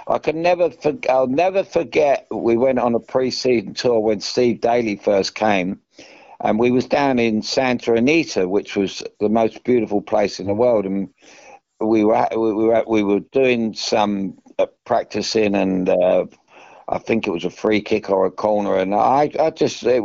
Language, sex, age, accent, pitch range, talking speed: English, male, 60-79, British, 100-140 Hz, 190 wpm